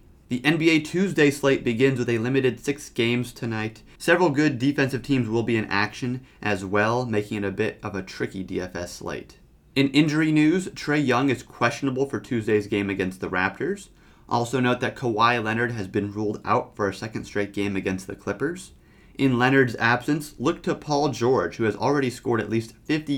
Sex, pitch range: male, 105-135 Hz